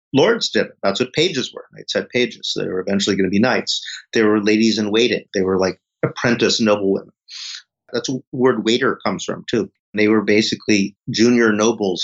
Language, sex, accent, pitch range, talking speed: English, male, American, 105-130 Hz, 190 wpm